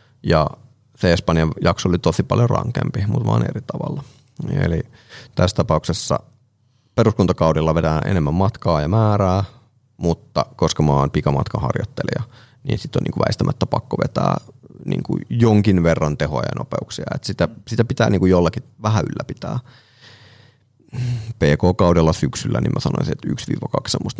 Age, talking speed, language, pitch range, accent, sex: 30-49, 130 wpm, Finnish, 90-125 Hz, native, male